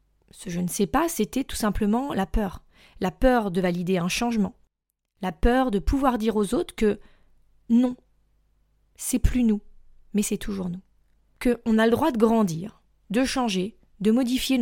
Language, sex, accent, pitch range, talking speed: French, female, French, 205-250 Hz, 190 wpm